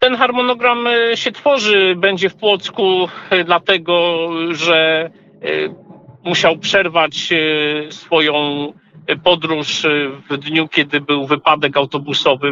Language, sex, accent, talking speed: Polish, male, native, 90 wpm